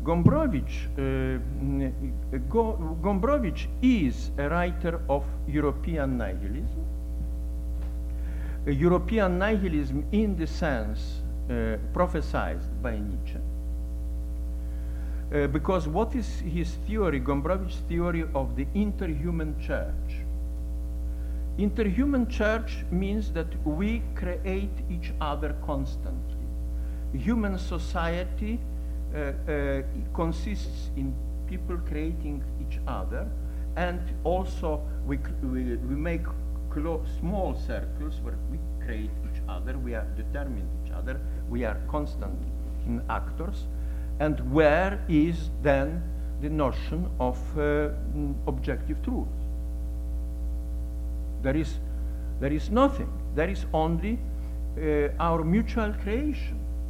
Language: English